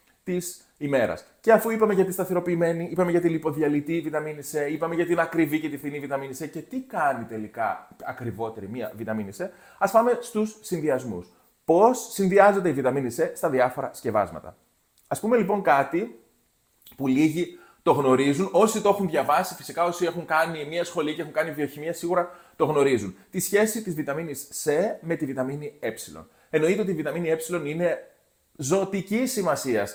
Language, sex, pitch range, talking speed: Greek, male, 130-185 Hz, 170 wpm